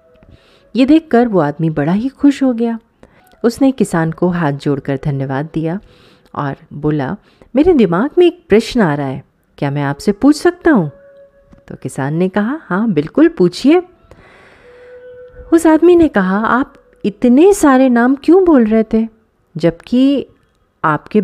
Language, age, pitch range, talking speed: Hindi, 30-49, 165-275 Hz, 155 wpm